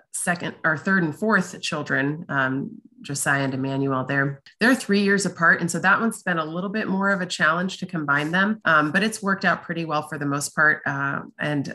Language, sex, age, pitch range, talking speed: English, female, 30-49, 140-170 Hz, 220 wpm